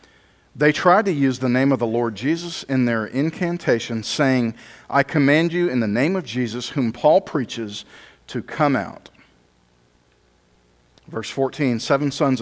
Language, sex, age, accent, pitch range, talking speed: English, male, 40-59, American, 95-155 Hz, 155 wpm